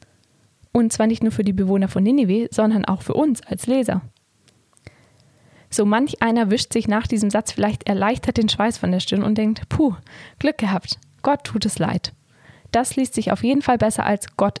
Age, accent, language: 10-29, German, German